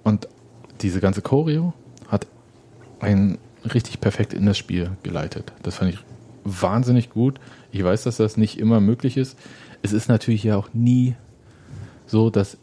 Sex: male